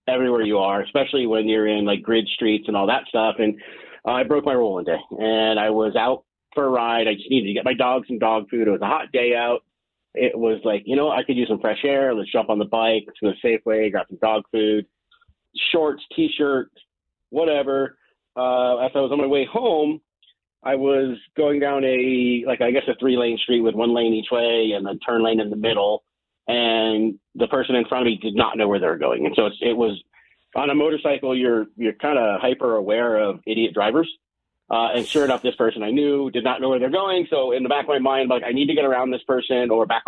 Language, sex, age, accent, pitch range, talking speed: English, male, 30-49, American, 110-135 Hz, 250 wpm